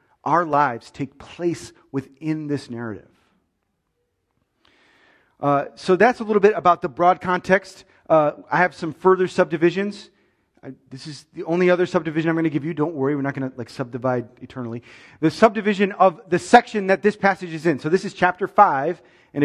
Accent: American